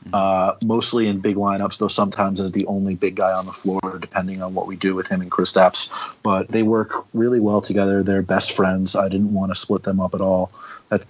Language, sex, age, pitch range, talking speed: English, male, 30-49, 95-105 Hz, 240 wpm